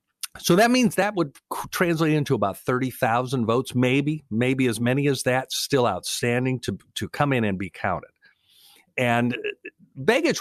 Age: 50-69